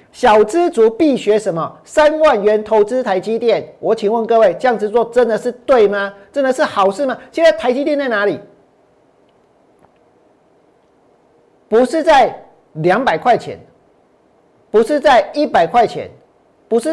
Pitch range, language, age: 215-300 Hz, Chinese, 40-59